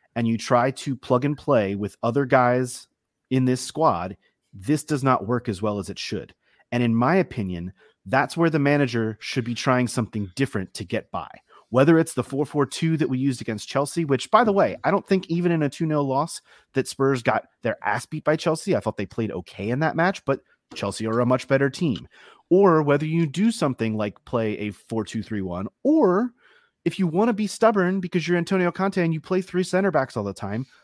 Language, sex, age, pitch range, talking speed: English, male, 30-49, 120-170 Hz, 215 wpm